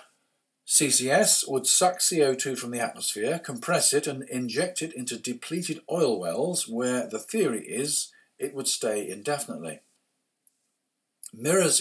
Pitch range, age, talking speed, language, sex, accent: 120-170 Hz, 50-69, 125 wpm, English, male, British